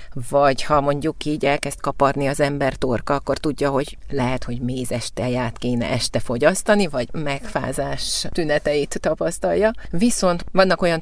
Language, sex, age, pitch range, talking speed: Hungarian, female, 30-49, 140-170 Hz, 130 wpm